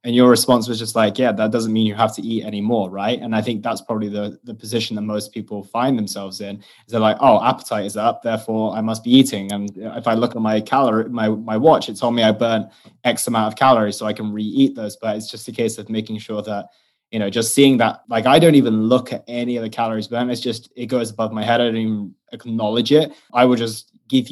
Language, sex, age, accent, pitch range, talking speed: English, male, 20-39, British, 110-125 Hz, 265 wpm